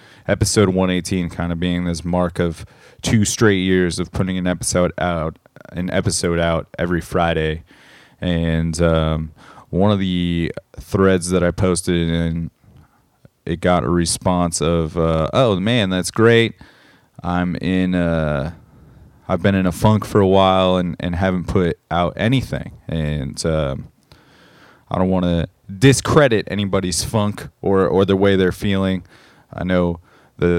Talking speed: 145 wpm